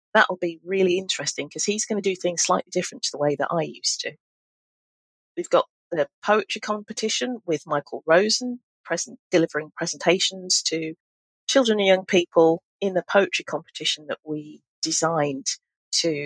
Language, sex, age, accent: English, female, 40-59, British